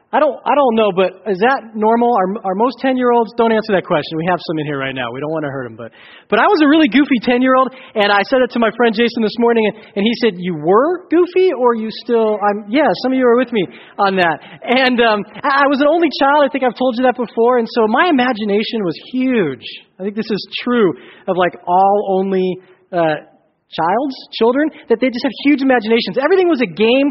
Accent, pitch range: American, 190-245 Hz